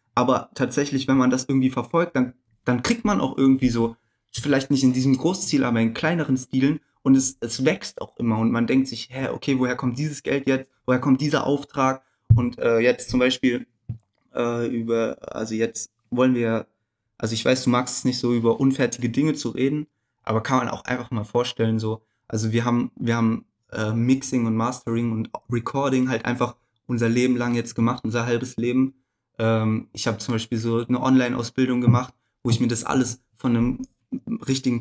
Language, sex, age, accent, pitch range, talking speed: German, male, 20-39, German, 115-130 Hz, 195 wpm